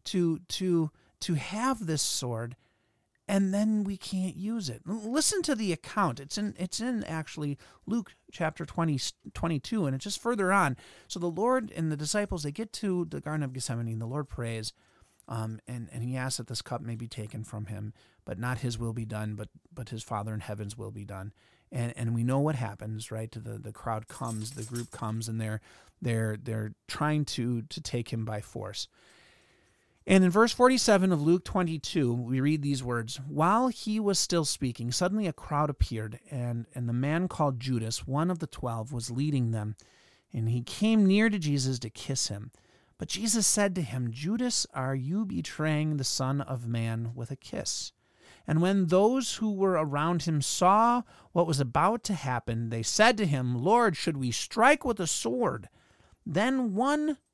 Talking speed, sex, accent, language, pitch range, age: 195 wpm, male, American, English, 115-185 Hz, 30-49